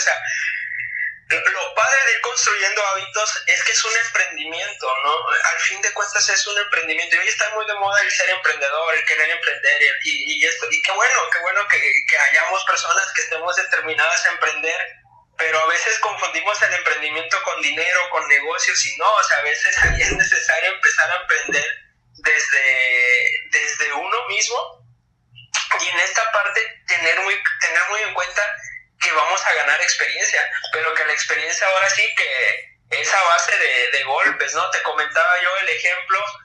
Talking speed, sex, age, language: 180 wpm, male, 20-39, Spanish